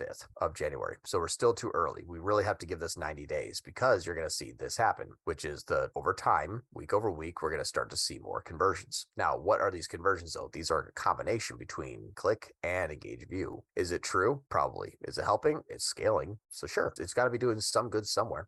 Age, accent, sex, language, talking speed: 30-49, American, male, English, 235 wpm